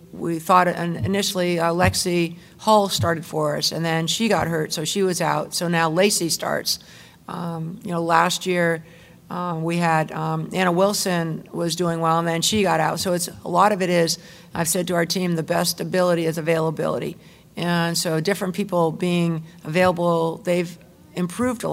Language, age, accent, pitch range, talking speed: English, 50-69, American, 165-180 Hz, 185 wpm